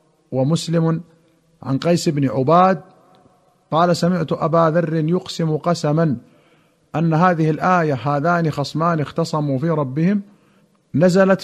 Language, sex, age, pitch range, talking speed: Arabic, male, 50-69, 155-185 Hz, 105 wpm